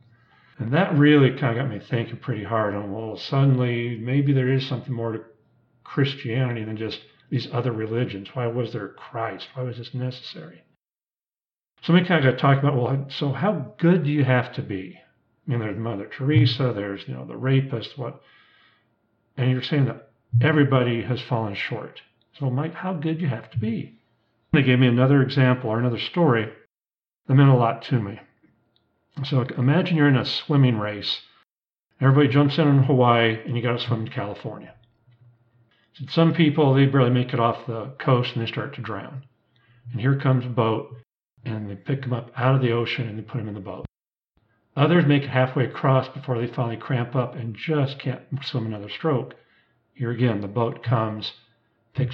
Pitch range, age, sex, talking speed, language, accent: 115-135 Hz, 50-69, male, 190 wpm, English, American